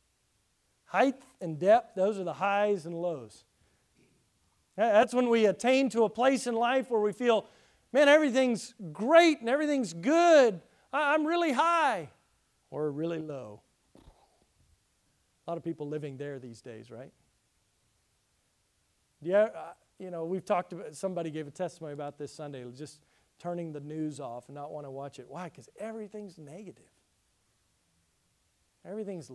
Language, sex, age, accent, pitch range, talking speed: English, male, 40-59, American, 130-185 Hz, 145 wpm